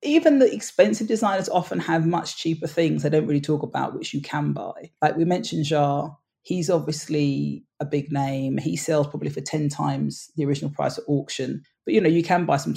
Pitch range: 140-165 Hz